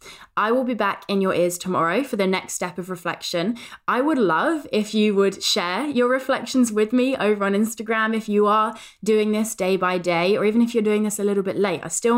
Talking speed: 235 wpm